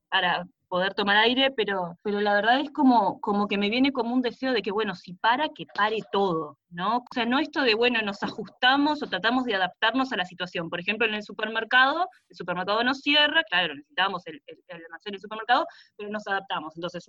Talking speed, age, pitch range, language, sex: 220 wpm, 20-39, 195-255 Hz, Spanish, female